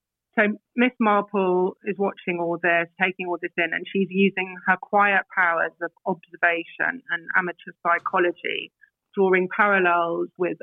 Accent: British